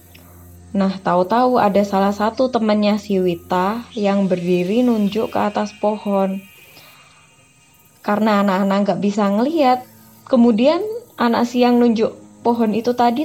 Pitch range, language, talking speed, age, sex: 195-225 Hz, Indonesian, 115 wpm, 20-39, female